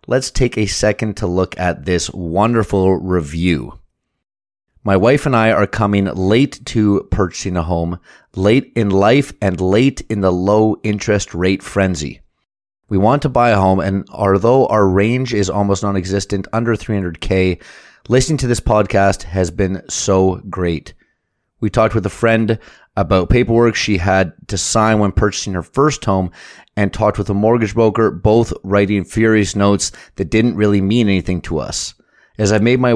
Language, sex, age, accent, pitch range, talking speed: English, male, 30-49, American, 95-110 Hz, 165 wpm